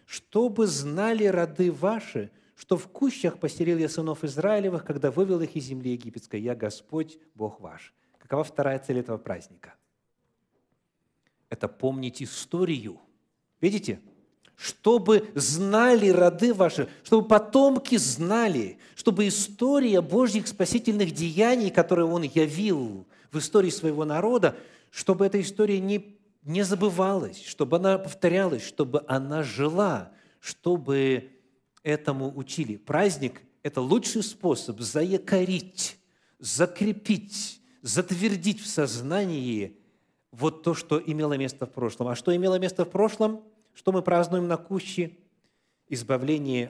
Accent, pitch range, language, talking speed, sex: native, 145-205 Hz, Russian, 120 wpm, male